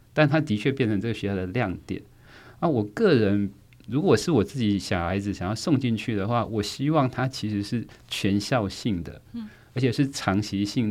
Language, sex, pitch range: Chinese, male, 95-125 Hz